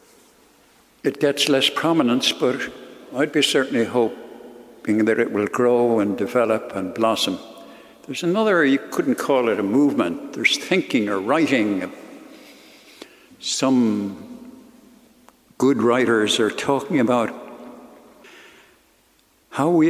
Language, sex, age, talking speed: English, male, 60-79, 110 wpm